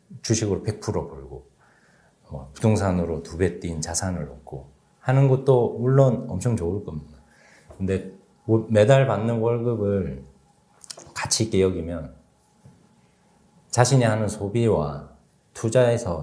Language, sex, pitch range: Korean, male, 85-125 Hz